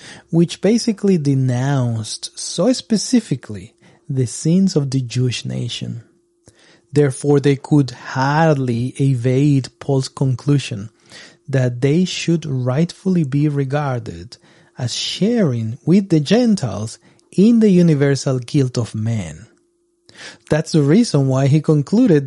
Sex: male